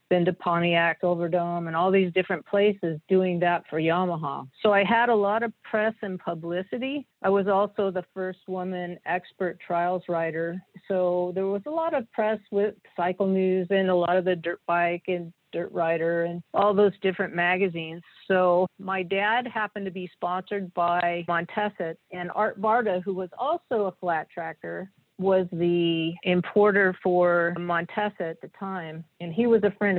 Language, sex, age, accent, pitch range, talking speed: English, female, 50-69, American, 175-205 Hz, 175 wpm